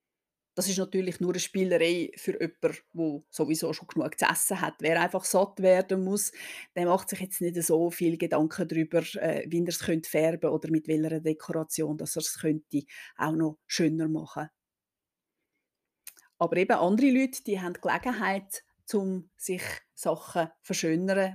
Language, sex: German, female